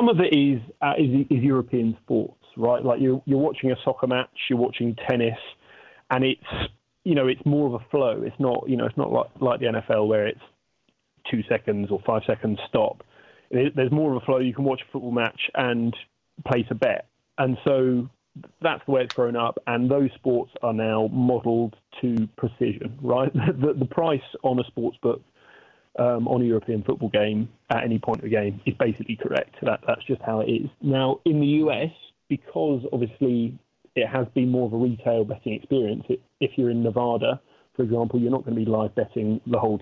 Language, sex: English, male